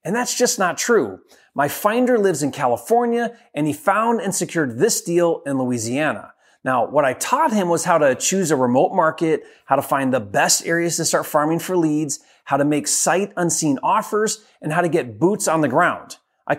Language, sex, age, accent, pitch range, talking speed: English, male, 30-49, American, 155-230 Hz, 205 wpm